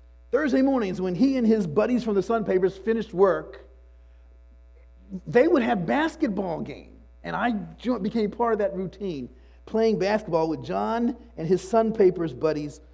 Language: English